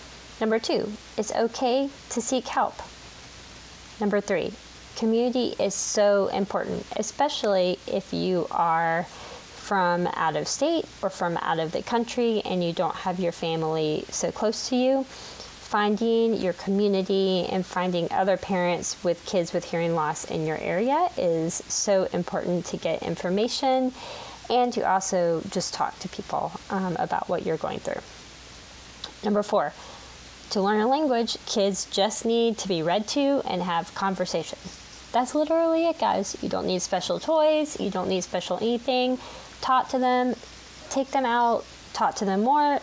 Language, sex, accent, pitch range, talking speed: English, female, American, 180-245 Hz, 155 wpm